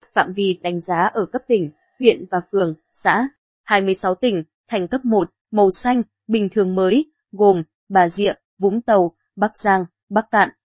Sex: female